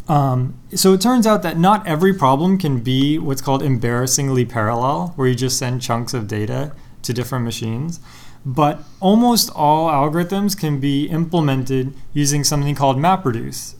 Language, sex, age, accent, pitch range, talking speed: English, male, 20-39, American, 130-160 Hz, 155 wpm